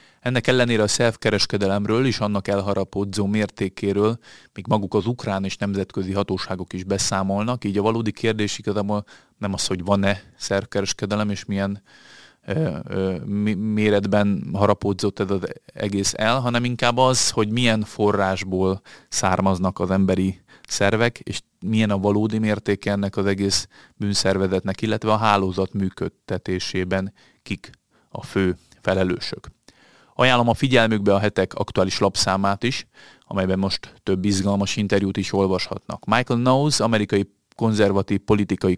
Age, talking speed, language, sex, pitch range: 30-49, 130 wpm, Hungarian, male, 95-110 Hz